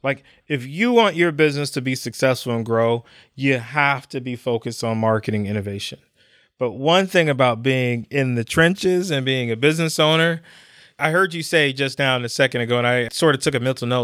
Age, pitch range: 30-49, 120-155 Hz